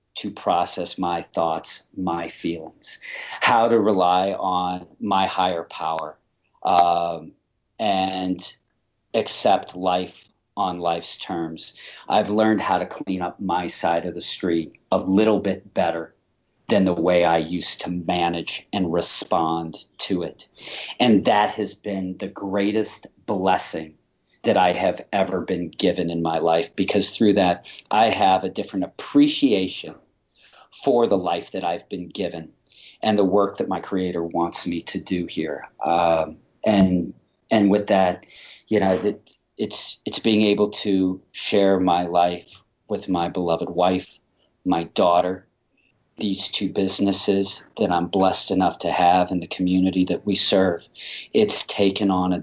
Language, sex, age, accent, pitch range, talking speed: English, male, 40-59, American, 85-100 Hz, 150 wpm